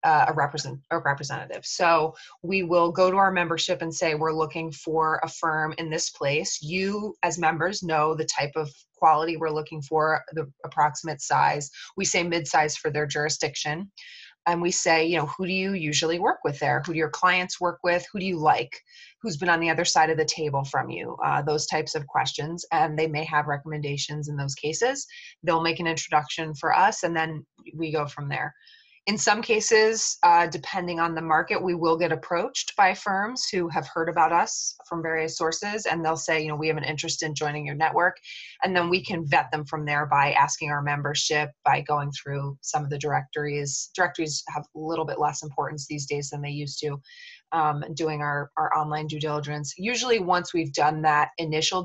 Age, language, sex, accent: 20-39, English, female, American